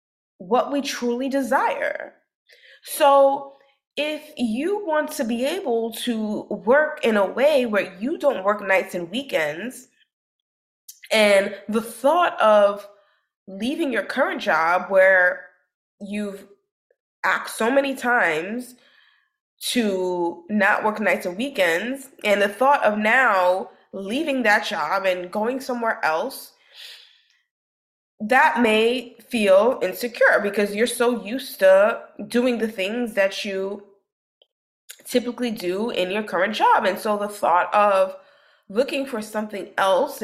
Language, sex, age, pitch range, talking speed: English, female, 20-39, 200-275 Hz, 125 wpm